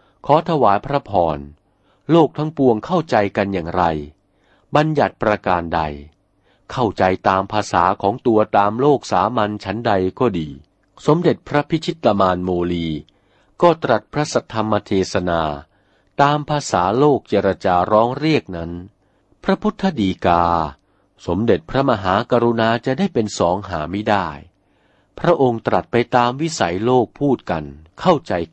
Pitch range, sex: 95-125 Hz, male